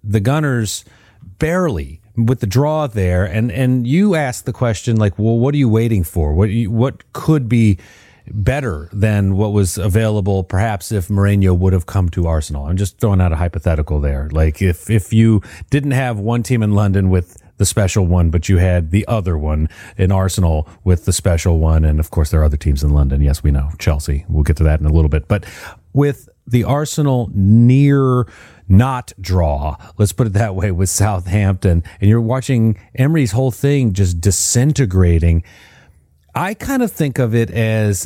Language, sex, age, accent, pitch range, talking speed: English, male, 30-49, American, 85-115 Hz, 190 wpm